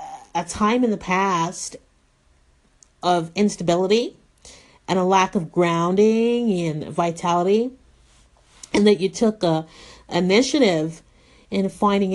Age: 40-59